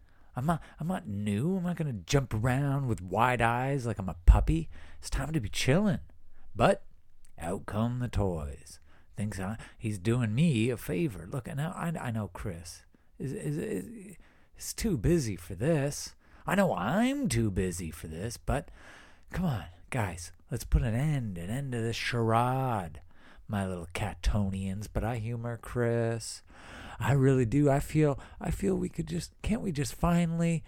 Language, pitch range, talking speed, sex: English, 95-145 Hz, 180 wpm, male